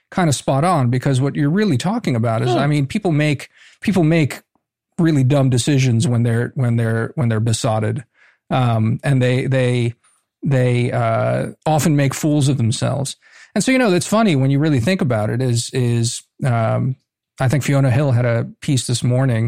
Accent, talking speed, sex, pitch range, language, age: American, 190 wpm, male, 120-140 Hz, English, 40-59